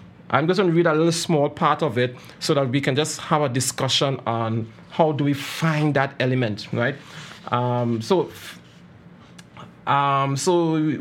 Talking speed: 170 wpm